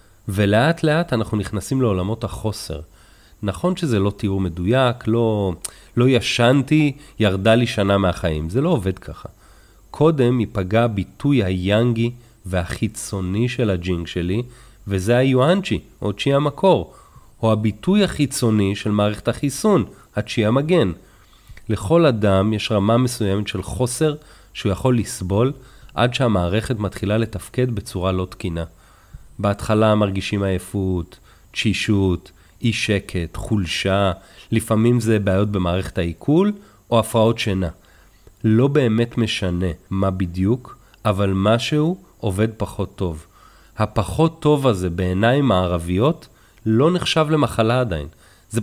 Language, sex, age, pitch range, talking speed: Hebrew, male, 30-49, 95-125 Hz, 115 wpm